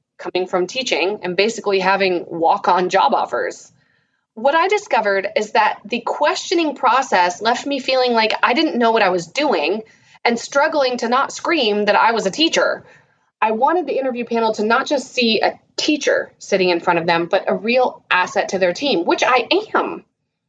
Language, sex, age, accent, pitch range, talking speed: English, female, 30-49, American, 200-285 Hz, 185 wpm